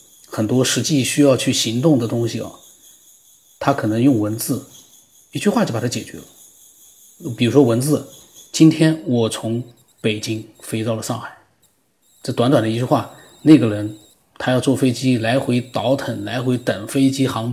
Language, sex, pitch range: Chinese, male, 115-145 Hz